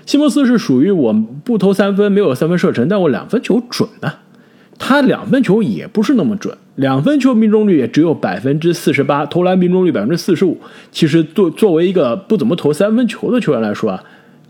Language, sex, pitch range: Chinese, male, 150-225 Hz